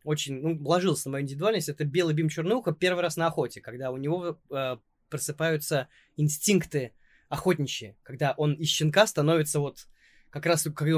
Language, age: Russian, 20-39